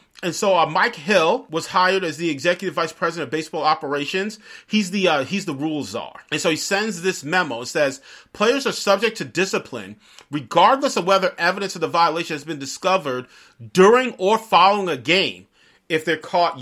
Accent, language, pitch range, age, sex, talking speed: American, English, 155-200 Hz, 40-59, male, 190 wpm